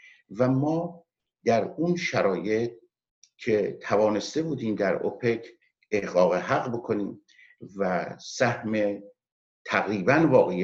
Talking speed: 95 wpm